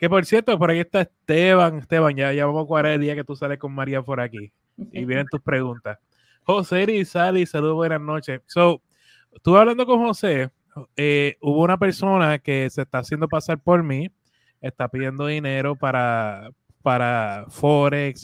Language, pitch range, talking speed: Spanish, 130-175 Hz, 180 wpm